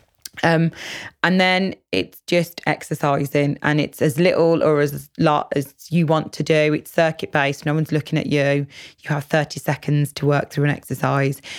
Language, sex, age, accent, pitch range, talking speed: English, female, 20-39, British, 140-155 Hz, 175 wpm